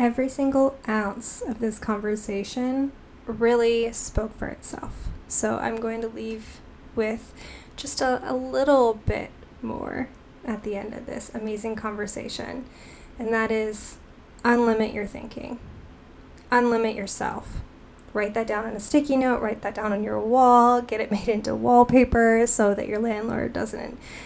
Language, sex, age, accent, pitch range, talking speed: English, female, 10-29, American, 210-245 Hz, 150 wpm